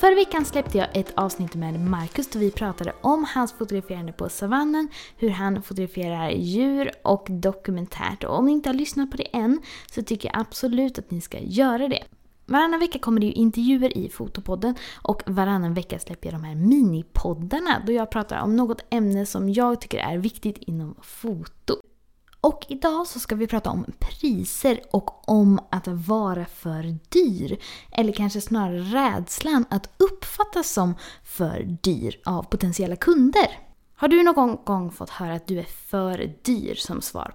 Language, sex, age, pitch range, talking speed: Swedish, female, 20-39, 190-260 Hz, 175 wpm